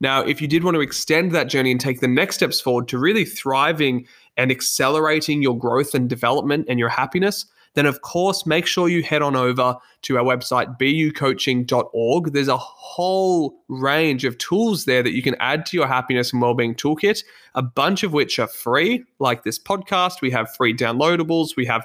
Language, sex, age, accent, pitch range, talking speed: English, male, 20-39, Australian, 120-155 Hz, 200 wpm